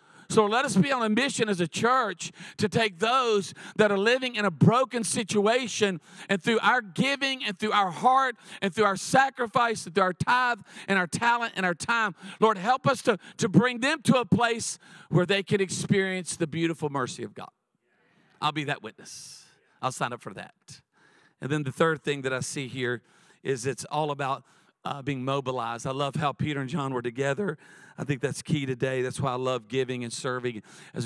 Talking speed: 205 wpm